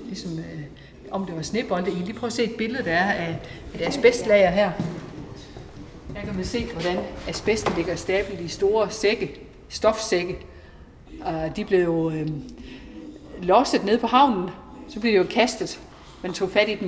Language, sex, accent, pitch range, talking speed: Danish, female, native, 165-210 Hz, 180 wpm